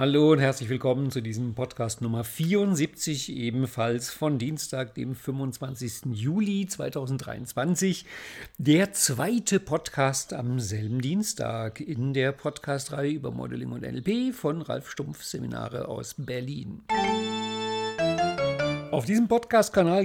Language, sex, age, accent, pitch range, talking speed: German, male, 50-69, German, 125-160 Hz, 115 wpm